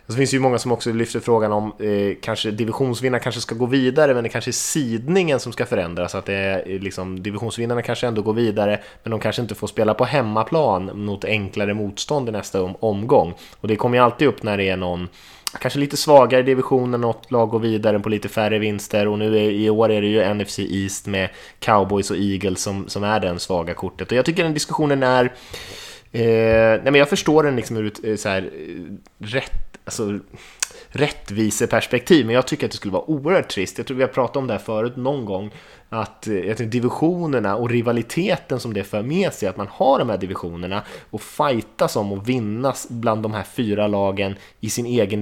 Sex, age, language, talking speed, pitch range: male, 20-39, Swedish, 215 wpm, 100-125 Hz